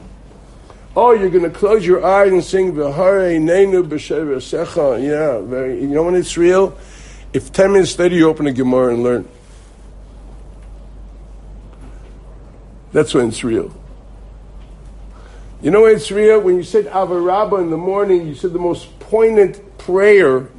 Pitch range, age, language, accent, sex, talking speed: 160-225 Hz, 60-79, English, American, male, 145 wpm